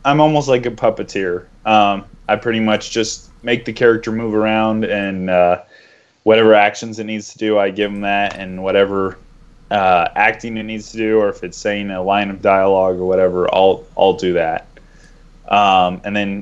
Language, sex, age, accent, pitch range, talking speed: English, male, 20-39, American, 95-110 Hz, 190 wpm